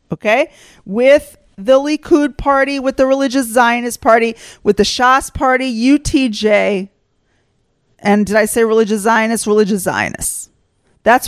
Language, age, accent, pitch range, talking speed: English, 40-59, American, 210-270 Hz, 130 wpm